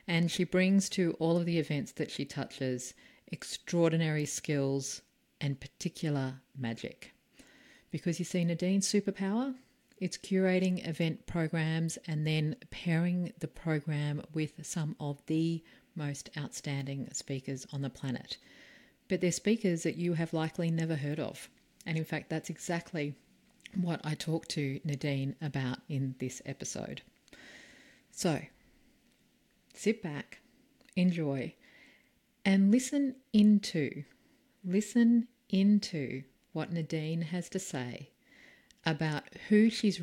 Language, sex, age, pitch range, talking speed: English, female, 40-59, 145-195 Hz, 120 wpm